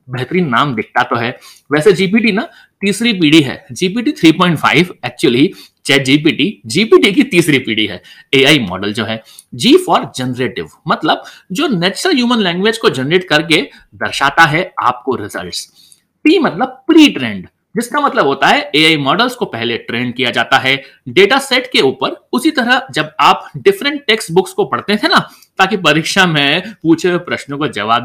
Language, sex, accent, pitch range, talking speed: Hindi, male, native, 135-225 Hz, 150 wpm